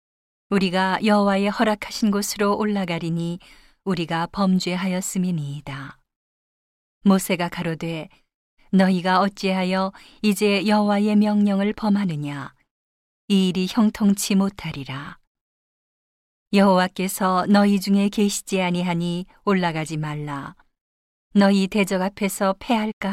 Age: 40-59